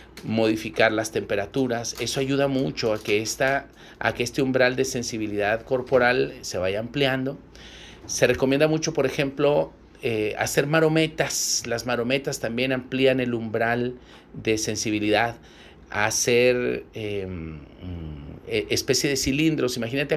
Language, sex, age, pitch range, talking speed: Spanish, male, 40-59, 110-140 Hz, 125 wpm